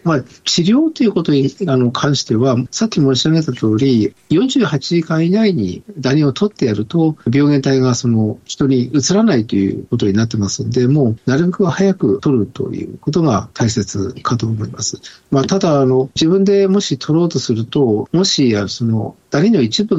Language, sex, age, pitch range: Japanese, male, 50-69, 115-155 Hz